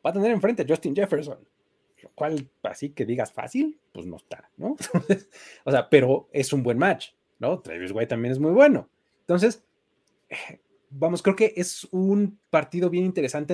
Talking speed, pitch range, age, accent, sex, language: 175 wpm, 130-200 Hz, 30-49, Mexican, male, Spanish